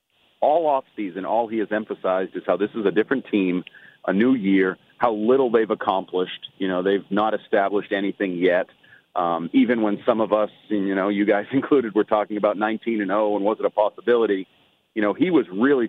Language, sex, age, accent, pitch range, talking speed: English, male, 40-59, American, 100-130 Hz, 200 wpm